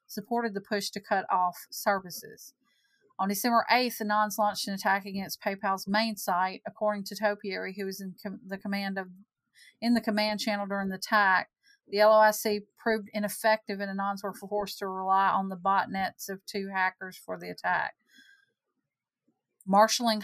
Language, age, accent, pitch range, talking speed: English, 40-59, American, 190-210 Hz, 165 wpm